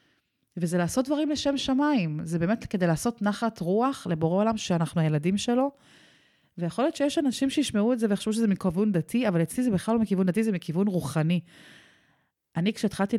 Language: Hebrew